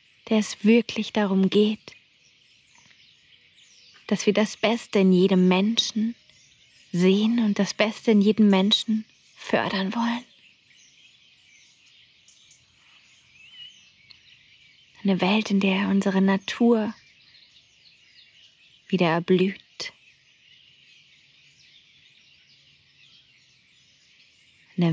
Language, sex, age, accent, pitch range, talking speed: German, female, 30-49, German, 190-220 Hz, 70 wpm